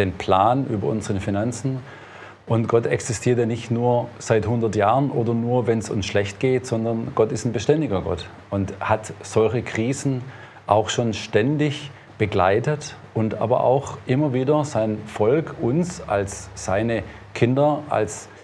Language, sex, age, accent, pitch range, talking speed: German, male, 40-59, German, 110-140 Hz, 155 wpm